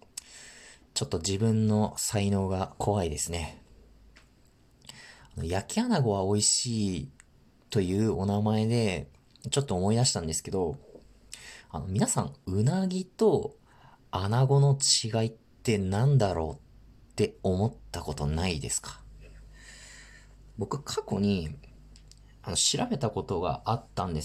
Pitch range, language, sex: 100-130 Hz, Japanese, male